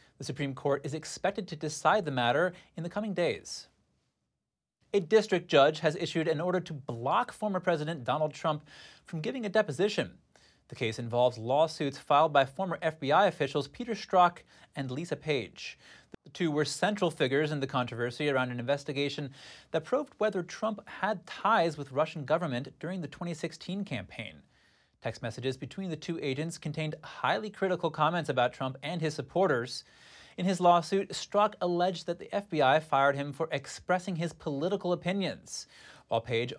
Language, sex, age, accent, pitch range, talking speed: English, male, 30-49, American, 140-185 Hz, 165 wpm